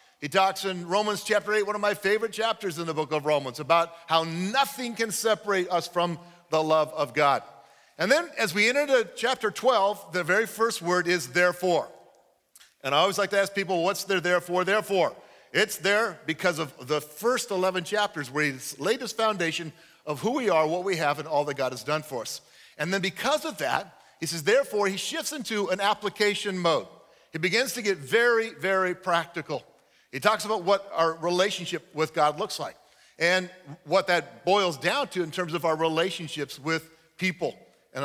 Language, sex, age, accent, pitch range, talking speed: English, male, 50-69, American, 155-205 Hz, 195 wpm